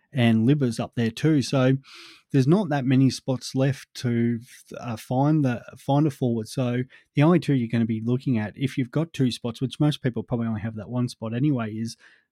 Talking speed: 220 wpm